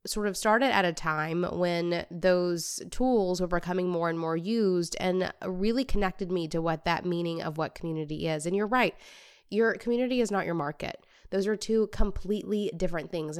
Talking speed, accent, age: 190 wpm, American, 20-39